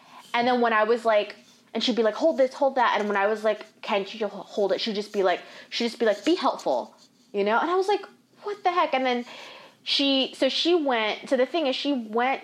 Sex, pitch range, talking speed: female, 180-265 Hz, 265 wpm